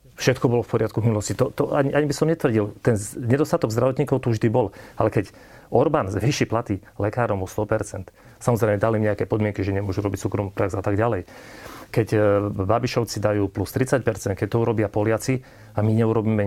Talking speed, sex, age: 190 wpm, male, 40-59